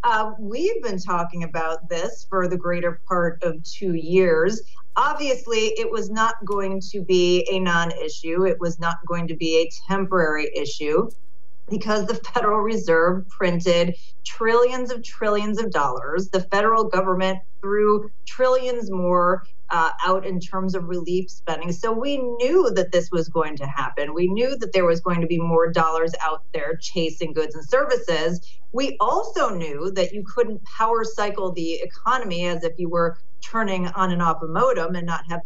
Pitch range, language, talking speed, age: 170-210 Hz, English, 175 wpm, 30-49